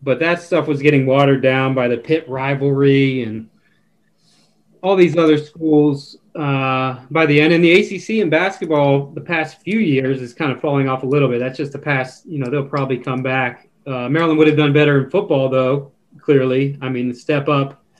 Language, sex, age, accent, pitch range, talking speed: English, male, 30-49, American, 135-160 Hz, 205 wpm